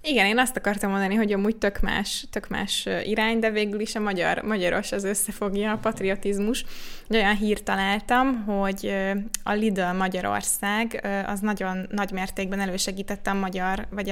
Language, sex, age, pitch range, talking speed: Hungarian, female, 20-39, 195-215 Hz, 155 wpm